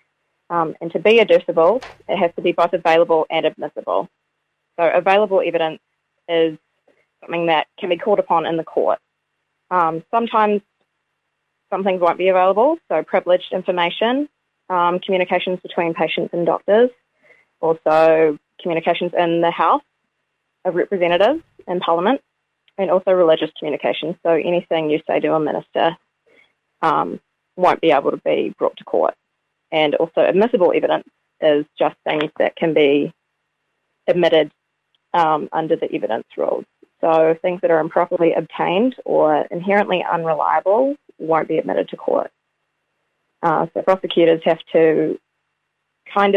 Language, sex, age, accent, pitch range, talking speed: English, female, 20-39, Australian, 165-195 Hz, 140 wpm